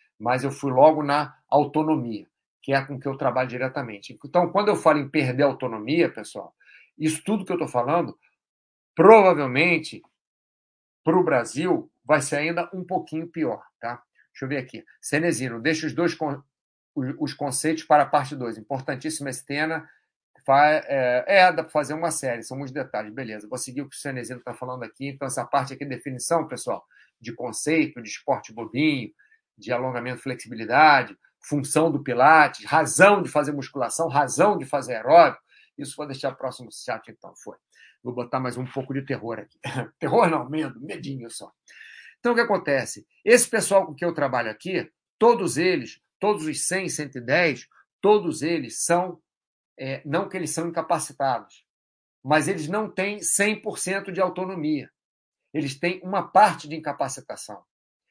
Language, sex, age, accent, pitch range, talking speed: Portuguese, male, 50-69, Brazilian, 135-170 Hz, 165 wpm